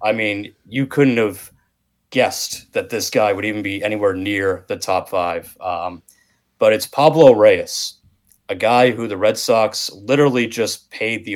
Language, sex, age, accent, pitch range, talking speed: English, male, 30-49, American, 95-125 Hz, 170 wpm